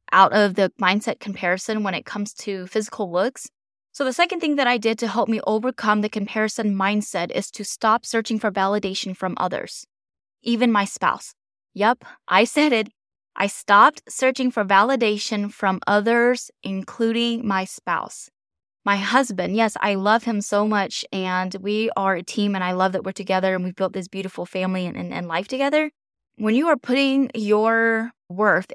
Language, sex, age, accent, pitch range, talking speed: English, female, 20-39, American, 190-230 Hz, 180 wpm